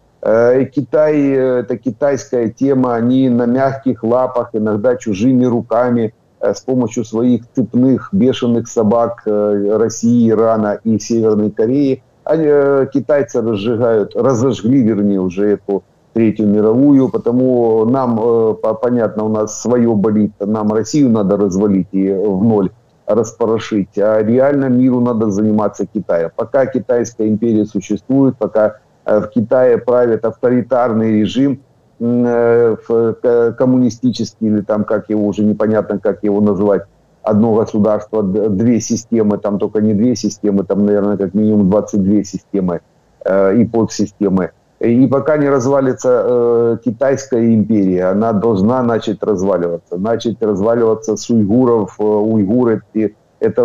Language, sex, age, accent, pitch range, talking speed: Ukrainian, male, 50-69, native, 105-125 Hz, 120 wpm